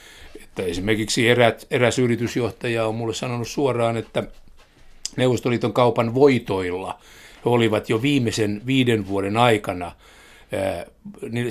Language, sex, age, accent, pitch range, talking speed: Finnish, male, 60-79, native, 105-130 Hz, 110 wpm